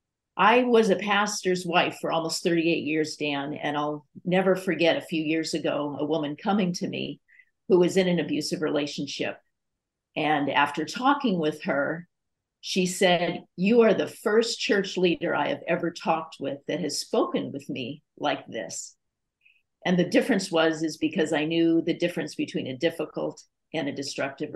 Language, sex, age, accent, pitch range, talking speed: English, female, 50-69, American, 155-190 Hz, 170 wpm